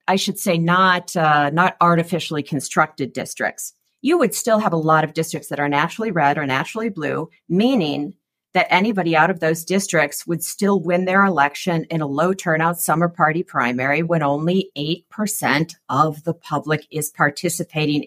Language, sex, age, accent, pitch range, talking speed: English, female, 50-69, American, 155-210 Hz, 170 wpm